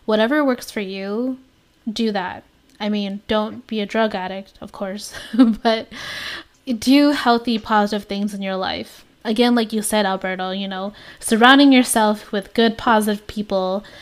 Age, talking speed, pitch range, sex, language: 10-29, 155 wpm, 200-230 Hz, female, English